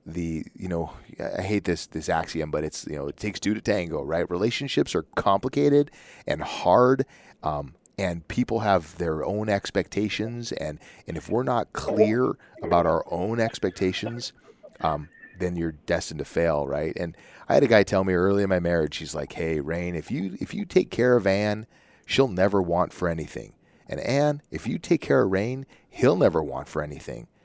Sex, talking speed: male, 190 wpm